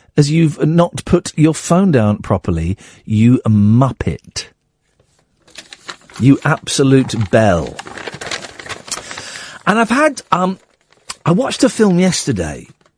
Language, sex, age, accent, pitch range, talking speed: English, male, 40-59, British, 115-180 Hz, 100 wpm